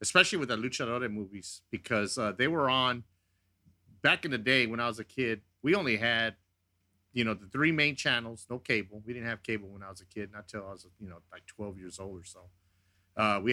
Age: 40-59